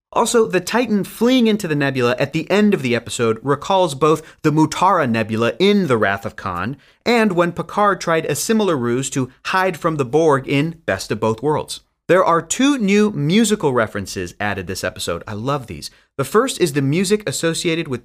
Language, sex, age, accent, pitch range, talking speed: English, male, 30-49, American, 125-175 Hz, 195 wpm